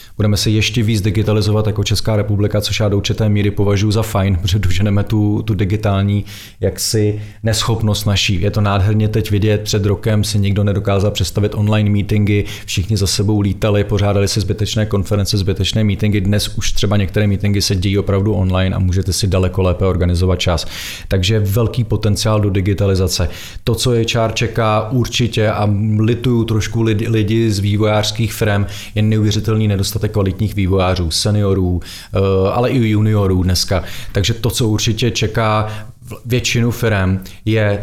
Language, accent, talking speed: Czech, native, 155 wpm